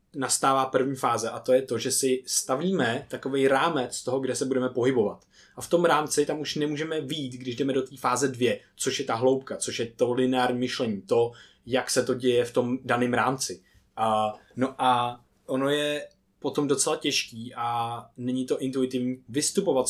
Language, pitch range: Czech, 120-140 Hz